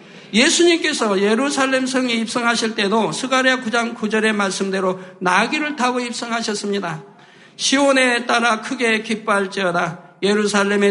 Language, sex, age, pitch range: Korean, male, 50-69, 195-245 Hz